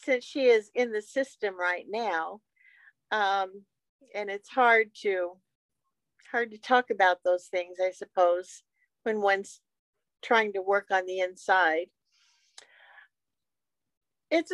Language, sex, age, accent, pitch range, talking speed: English, female, 50-69, American, 195-245 Hz, 130 wpm